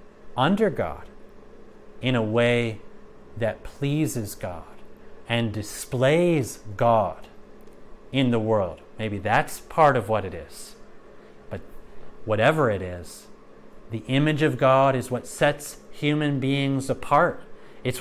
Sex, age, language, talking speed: male, 30-49, English, 120 wpm